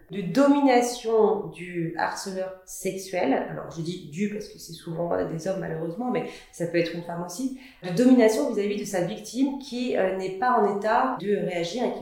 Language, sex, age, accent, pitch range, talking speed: French, female, 30-49, French, 170-235 Hz, 195 wpm